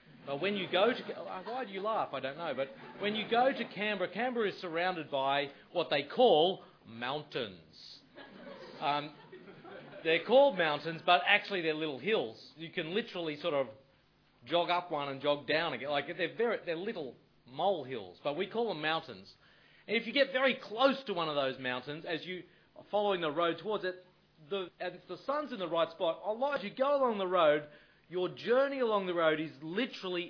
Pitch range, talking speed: 145-200 Hz, 200 wpm